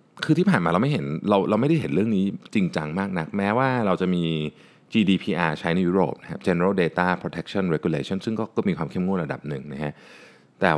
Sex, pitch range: male, 80-100 Hz